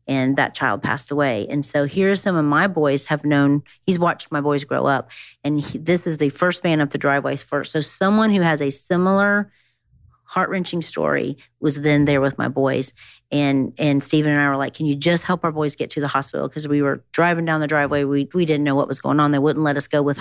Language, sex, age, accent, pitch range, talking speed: English, female, 40-59, American, 135-155 Hz, 250 wpm